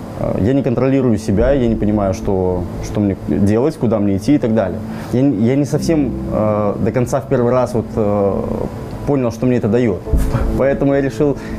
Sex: male